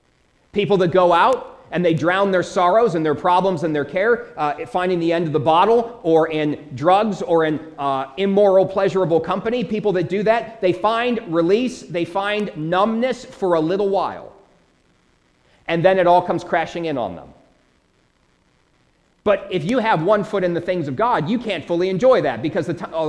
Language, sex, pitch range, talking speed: English, male, 165-220 Hz, 185 wpm